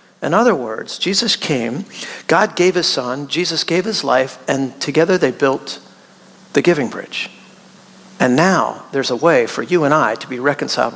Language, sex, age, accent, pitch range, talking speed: English, male, 50-69, American, 165-220 Hz, 175 wpm